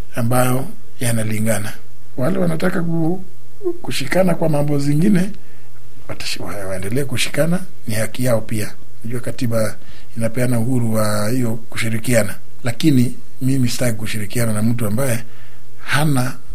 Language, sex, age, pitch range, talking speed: Swahili, male, 60-79, 115-155 Hz, 110 wpm